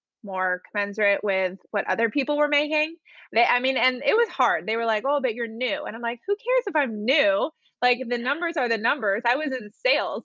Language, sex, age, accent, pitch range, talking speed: English, female, 20-39, American, 205-270 Hz, 230 wpm